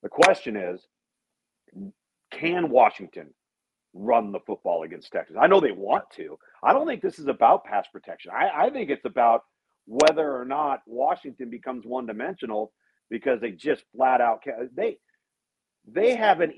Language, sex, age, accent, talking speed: English, male, 50-69, American, 150 wpm